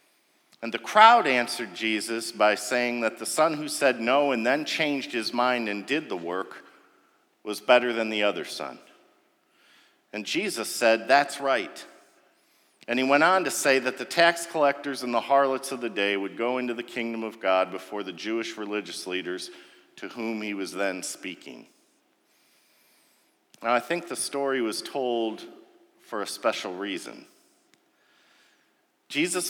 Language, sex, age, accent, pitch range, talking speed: English, male, 50-69, American, 115-185 Hz, 160 wpm